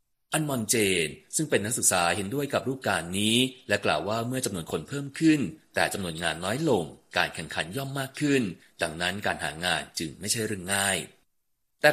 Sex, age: male, 30-49